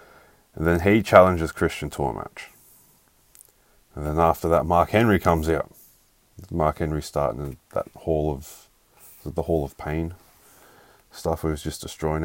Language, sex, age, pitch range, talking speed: English, male, 20-39, 75-85 Hz, 150 wpm